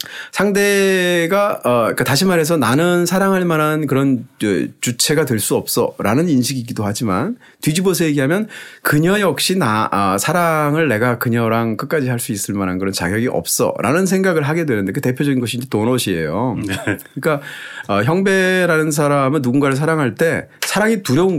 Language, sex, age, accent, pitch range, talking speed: English, male, 30-49, Korean, 125-185 Hz, 125 wpm